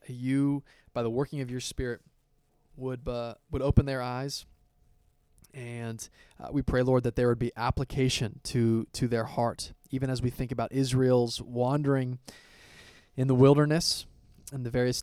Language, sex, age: English, male, 20-39